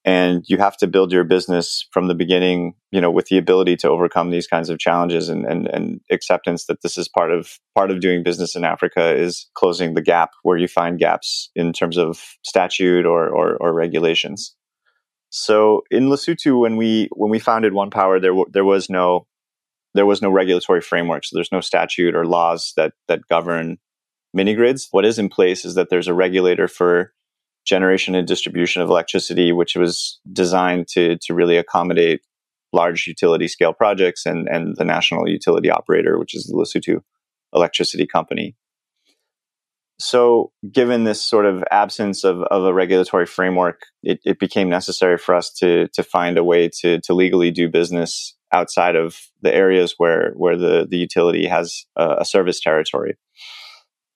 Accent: American